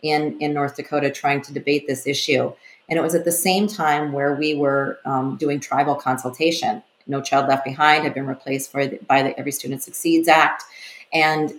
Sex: female